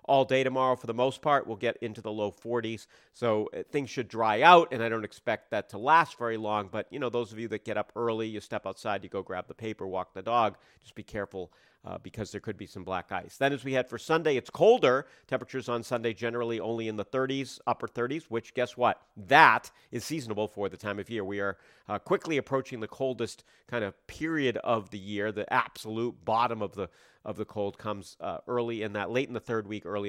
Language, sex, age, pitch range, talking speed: English, male, 40-59, 100-130 Hz, 245 wpm